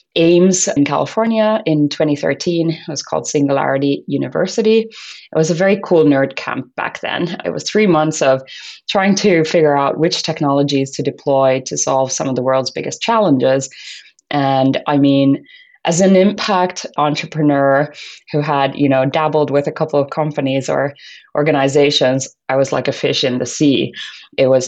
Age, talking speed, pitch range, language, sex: 20-39, 170 wpm, 140-180 Hz, English, female